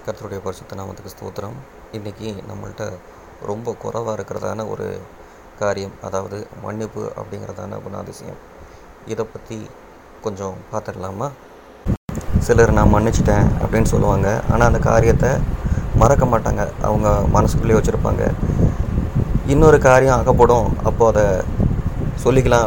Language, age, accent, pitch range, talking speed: Tamil, 30-49, native, 100-115 Hz, 105 wpm